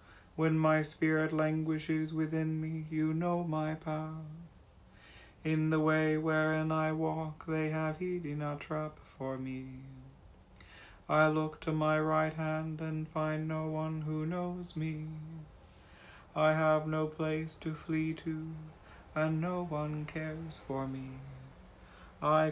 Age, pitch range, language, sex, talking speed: 30-49, 155-160 Hz, English, male, 135 wpm